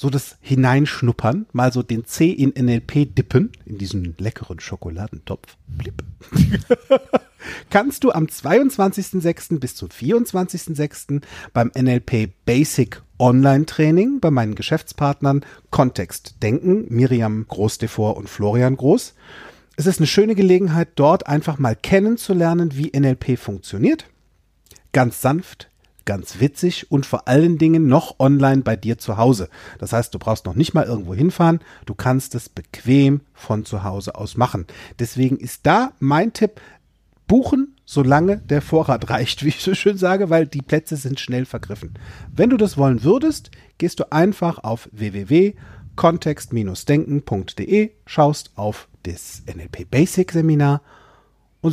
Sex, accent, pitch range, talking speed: male, German, 110-170 Hz, 135 wpm